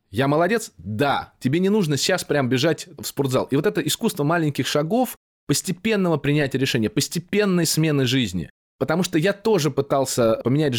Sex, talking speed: male, 160 wpm